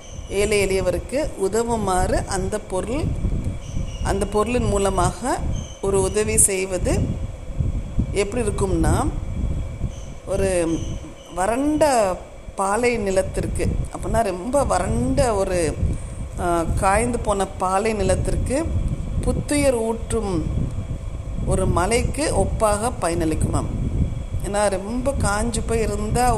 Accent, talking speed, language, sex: native, 80 wpm, Tamil, female